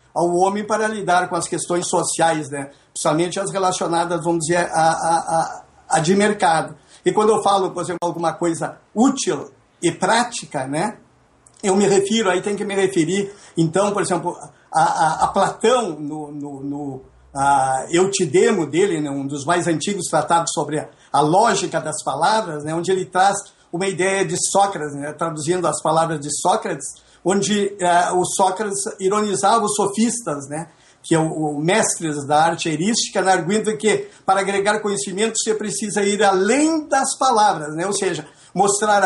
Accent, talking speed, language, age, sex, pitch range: Brazilian, 170 wpm, Portuguese, 50-69, male, 160-205 Hz